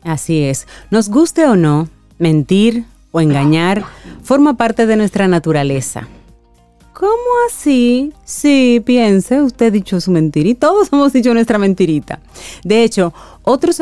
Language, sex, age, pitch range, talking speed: Spanish, female, 30-49, 155-230 Hz, 140 wpm